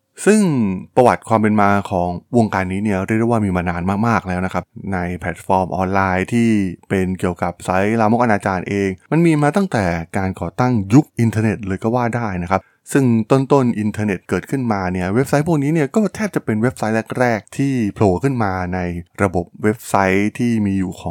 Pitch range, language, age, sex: 95-120 Hz, Thai, 20-39, male